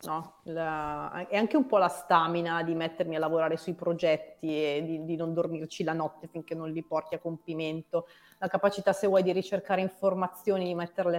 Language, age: Italian, 30-49